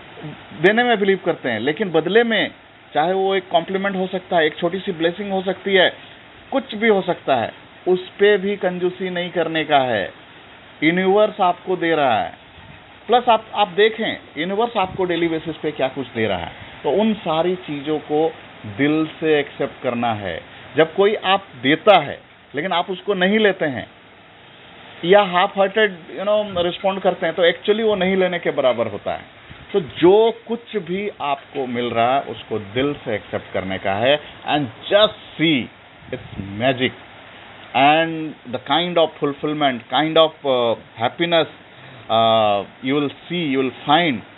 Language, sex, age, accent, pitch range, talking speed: Hindi, male, 40-59, native, 135-195 Hz, 175 wpm